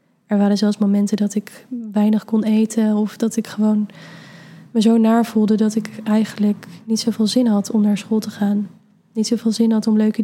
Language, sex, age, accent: Dutch, female, 20-39, Dutch